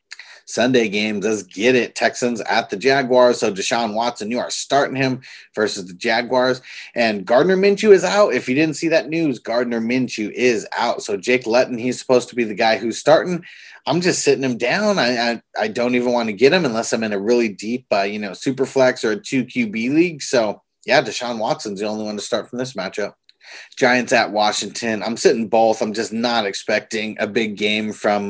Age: 30-49